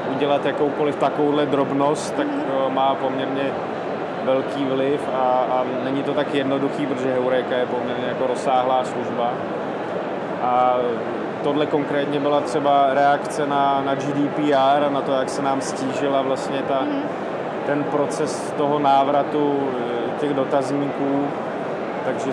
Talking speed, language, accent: 125 wpm, Czech, native